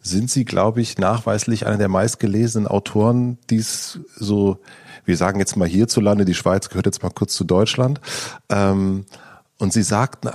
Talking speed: 155 wpm